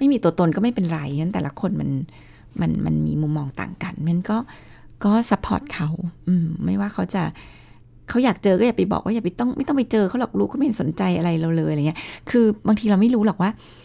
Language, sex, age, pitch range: Thai, female, 20-39, 160-215 Hz